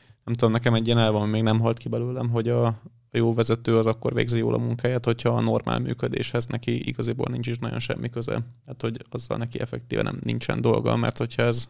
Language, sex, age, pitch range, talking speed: Hungarian, male, 30-49, 110-120 Hz, 220 wpm